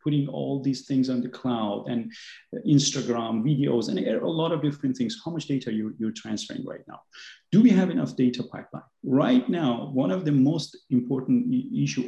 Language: English